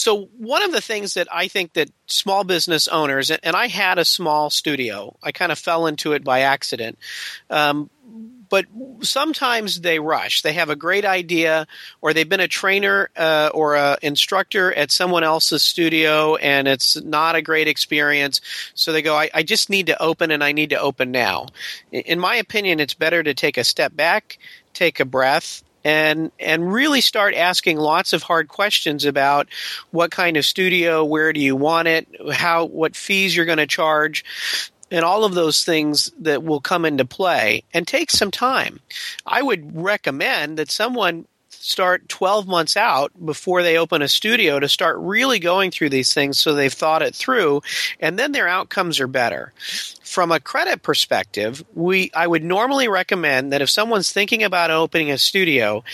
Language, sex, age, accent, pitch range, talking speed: English, male, 50-69, American, 150-195 Hz, 185 wpm